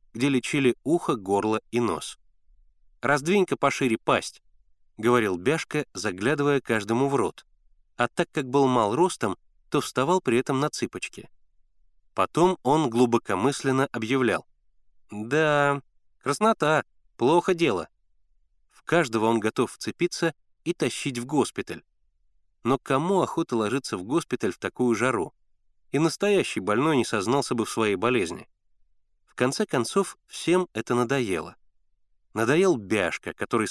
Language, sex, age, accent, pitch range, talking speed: Russian, male, 30-49, native, 100-145 Hz, 125 wpm